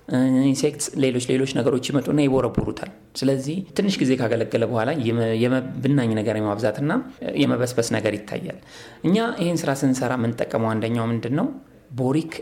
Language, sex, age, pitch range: Amharic, male, 30-49, 115-155 Hz